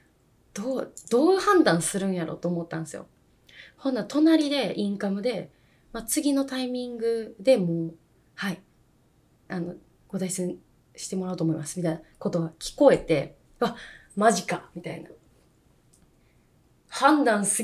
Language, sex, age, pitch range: Japanese, female, 20-39, 170-250 Hz